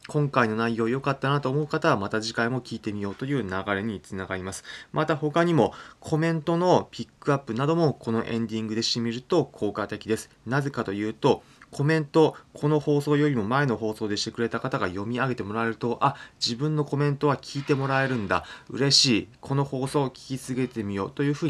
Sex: male